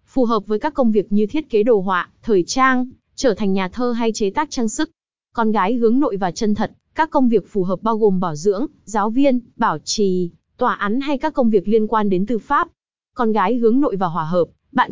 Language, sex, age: Vietnamese, female, 20-39